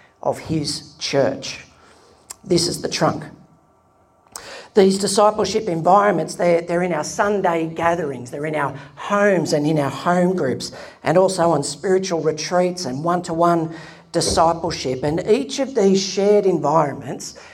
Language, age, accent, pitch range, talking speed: English, 50-69, Australian, 160-200 Hz, 140 wpm